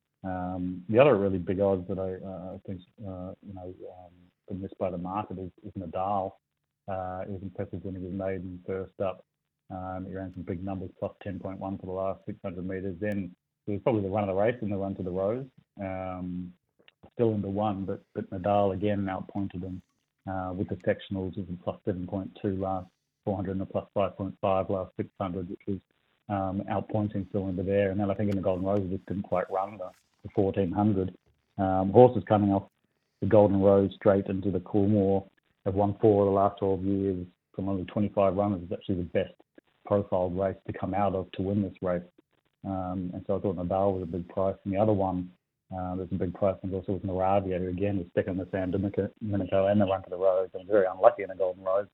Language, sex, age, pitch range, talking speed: English, male, 30-49, 95-100 Hz, 225 wpm